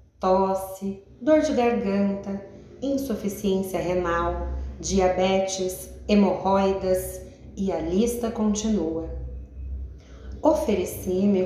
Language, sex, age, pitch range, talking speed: Portuguese, female, 30-49, 185-250 Hz, 70 wpm